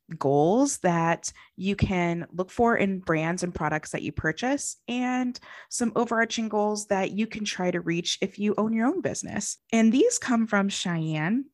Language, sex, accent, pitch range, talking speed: English, female, American, 170-230 Hz, 175 wpm